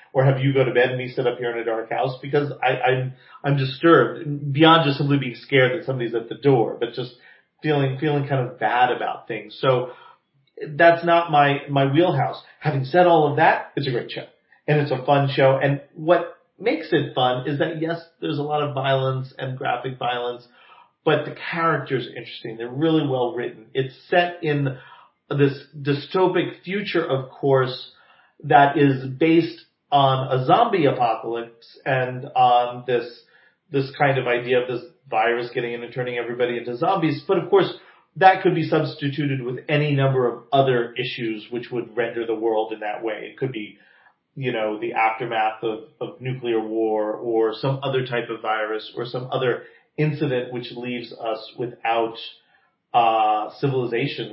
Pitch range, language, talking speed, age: 120-145 Hz, English, 180 wpm, 40-59